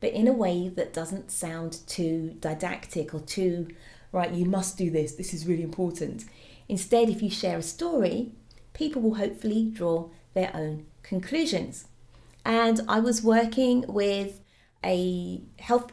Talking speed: 150 wpm